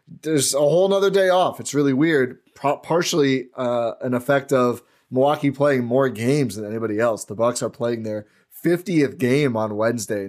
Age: 20-39